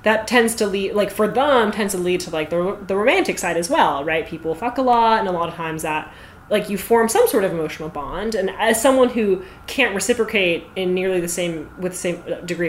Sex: female